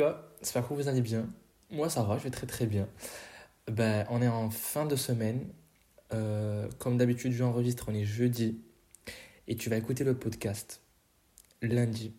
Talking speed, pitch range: 175 wpm, 110-125 Hz